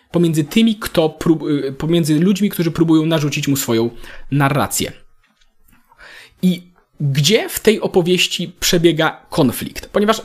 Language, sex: Polish, male